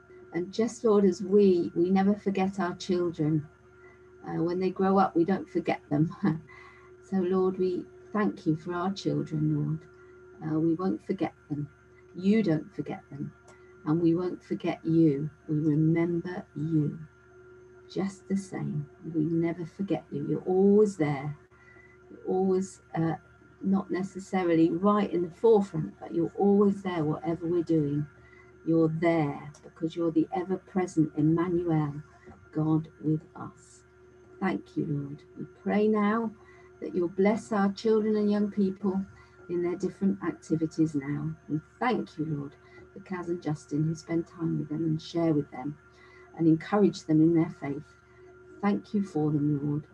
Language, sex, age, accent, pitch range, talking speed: English, female, 50-69, British, 155-195 Hz, 155 wpm